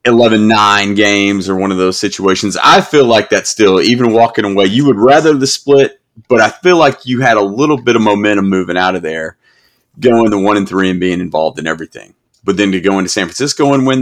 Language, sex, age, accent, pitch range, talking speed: English, male, 30-49, American, 95-120 Hz, 230 wpm